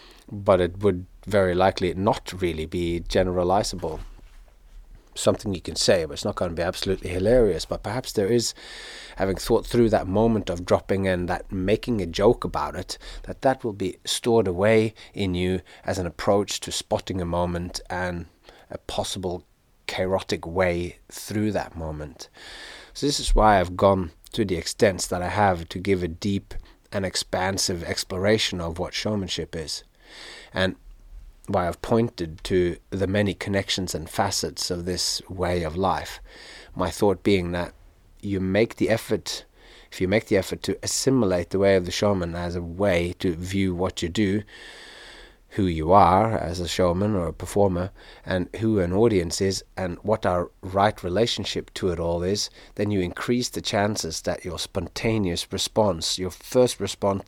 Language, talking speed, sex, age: English, 170 wpm, male, 30-49